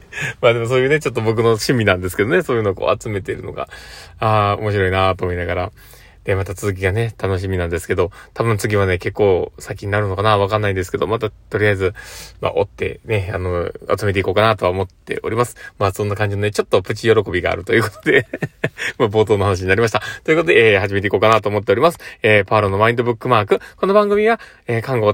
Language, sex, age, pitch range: Japanese, male, 20-39, 100-150 Hz